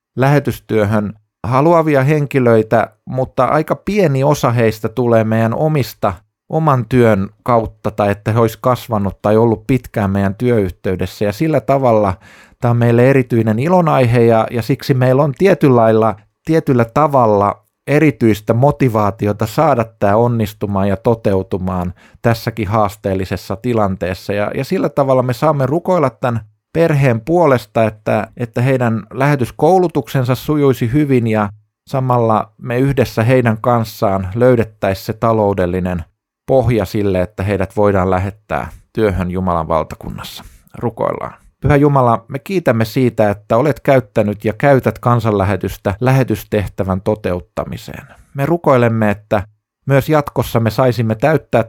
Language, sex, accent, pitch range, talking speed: Finnish, male, native, 105-130 Hz, 125 wpm